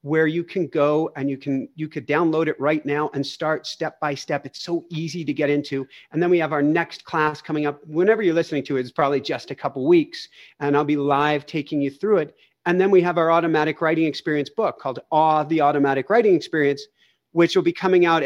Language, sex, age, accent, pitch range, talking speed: English, male, 50-69, American, 145-170 Hz, 235 wpm